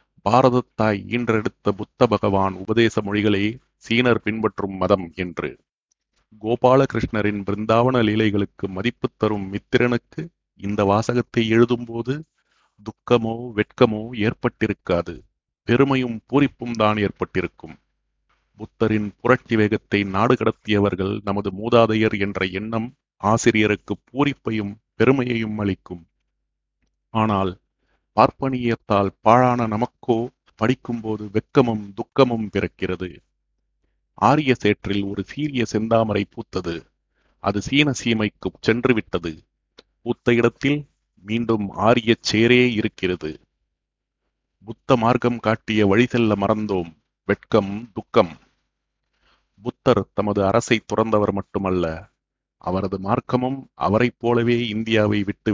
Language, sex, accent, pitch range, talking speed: Tamil, male, native, 100-120 Hz, 90 wpm